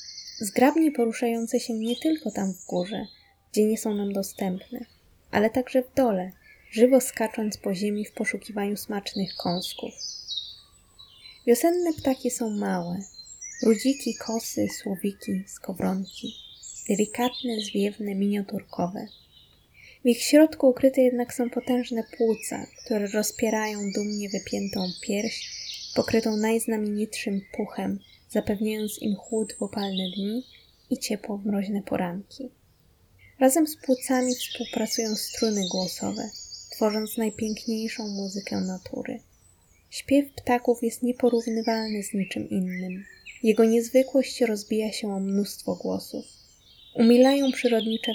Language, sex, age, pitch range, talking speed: Polish, female, 20-39, 200-240 Hz, 110 wpm